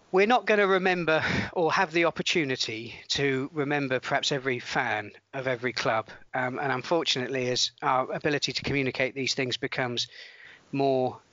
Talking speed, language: 155 wpm, English